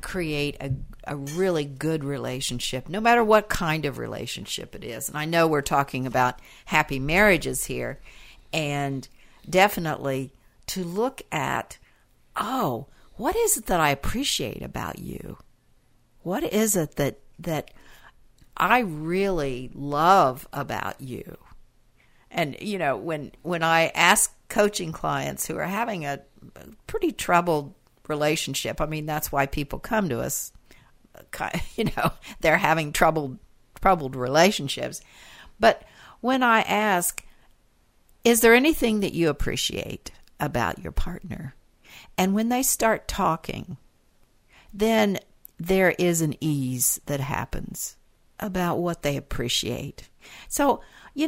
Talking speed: 130 wpm